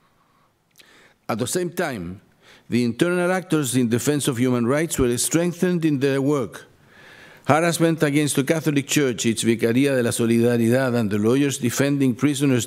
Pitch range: 125-160 Hz